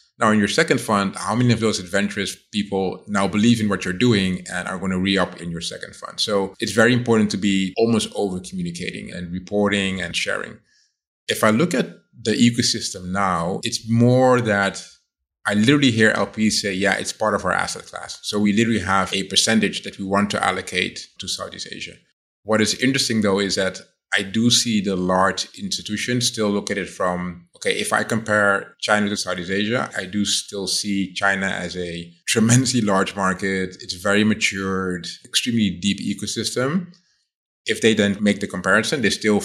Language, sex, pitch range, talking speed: English, male, 95-110 Hz, 185 wpm